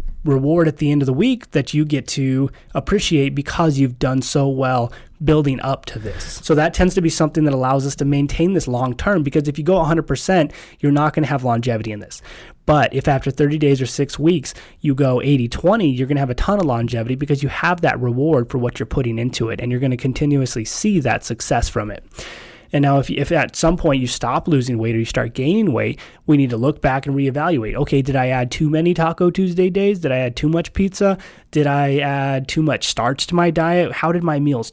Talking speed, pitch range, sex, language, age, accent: 240 wpm, 130-155 Hz, male, English, 20-39, American